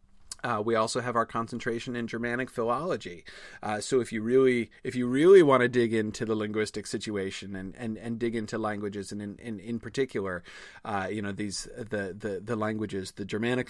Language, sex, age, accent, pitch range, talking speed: English, male, 30-49, American, 100-120 Hz, 195 wpm